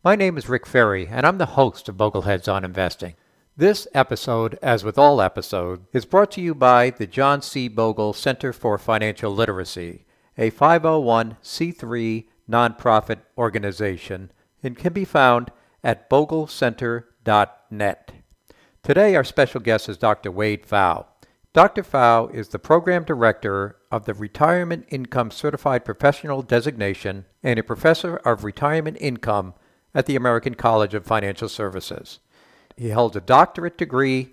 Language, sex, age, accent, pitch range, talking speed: English, male, 60-79, American, 110-140 Hz, 140 wpm